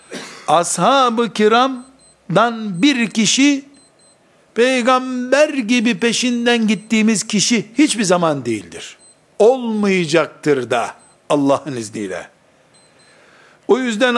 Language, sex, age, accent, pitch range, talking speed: Turkish, male, 60-79, native, 150-230 Hz, 75 wpm